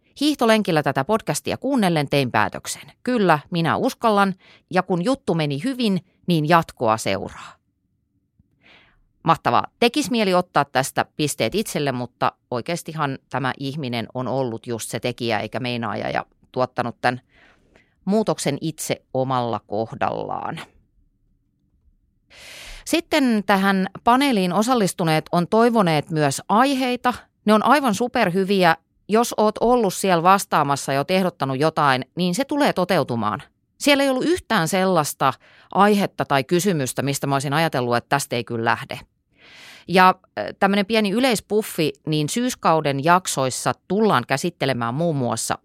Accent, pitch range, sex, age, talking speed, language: native, 135-205 Hz, female, 30-49, 125 wpm, Finnish